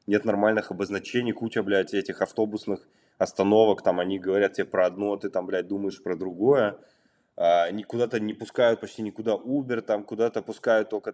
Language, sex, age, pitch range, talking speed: Russian, male, 20-39, 95-125 Hz, 180 wpm